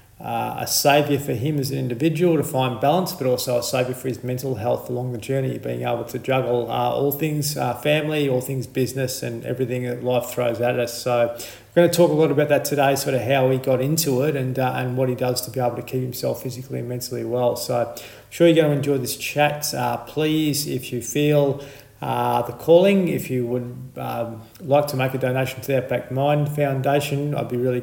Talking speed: 235 wpm